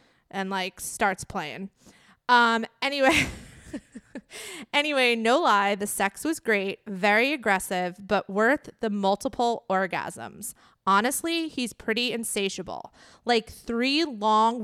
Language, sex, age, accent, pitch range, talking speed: English, female, 20-39, American, 200-255 Hz, 110 wpm